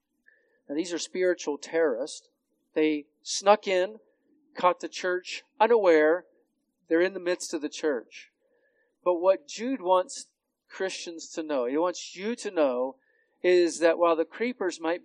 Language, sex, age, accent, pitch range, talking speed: English, male, 40-59, American, 155-250 Hz, 150 wpm